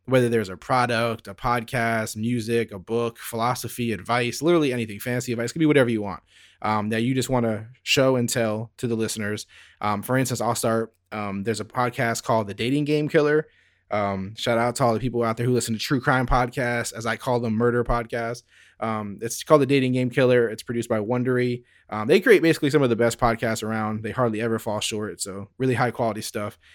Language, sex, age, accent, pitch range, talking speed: English, male, 20-39, American, 110-130 Hz, 220 wpm